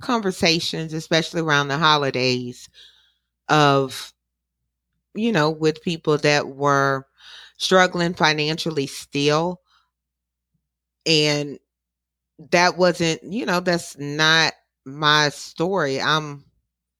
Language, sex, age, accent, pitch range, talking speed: English, female, 30-49, American, 145-175 Hz, 90 wpm